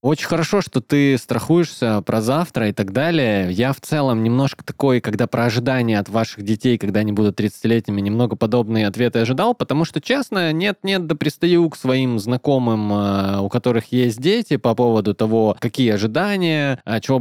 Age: 20-39